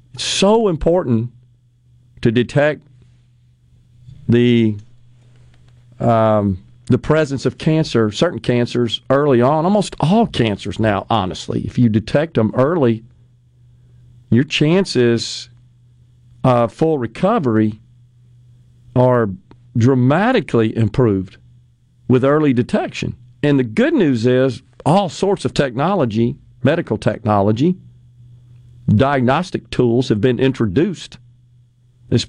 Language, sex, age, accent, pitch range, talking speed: English, male, 50-69, American, 120-130 Hz, 95 wpm